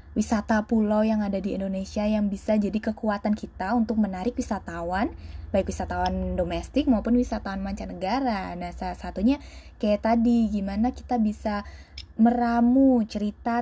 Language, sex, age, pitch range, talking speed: Indonesian, female, 20-39, 185-225 Hz, 130 wpm